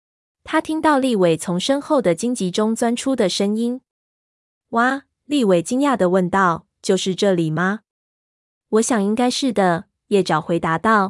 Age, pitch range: 20-39, 175-220 Hz